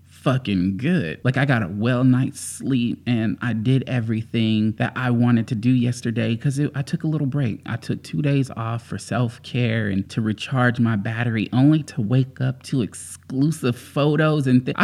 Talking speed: 180 wpm